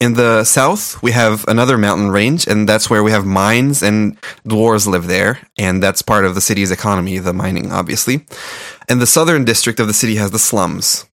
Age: 20-39